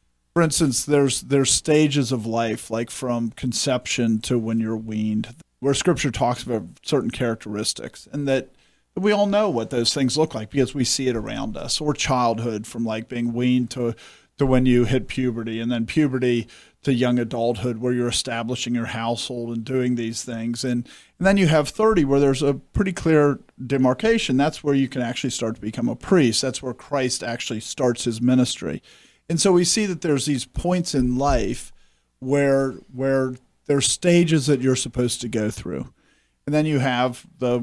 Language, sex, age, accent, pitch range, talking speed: English, male, 40-59, American, 120-140 Hz, 190 wpm